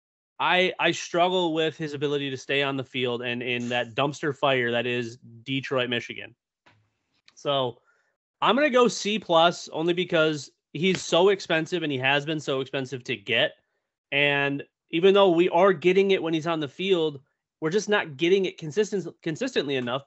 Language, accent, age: English, American, 30-49